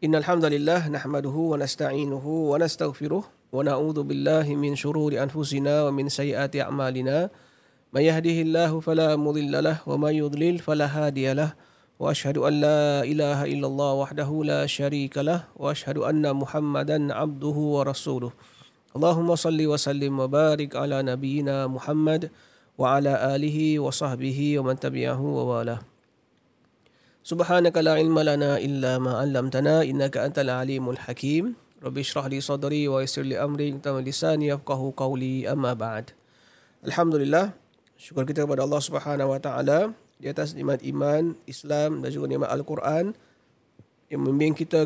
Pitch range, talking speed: 140-155 Hz, 140 wpm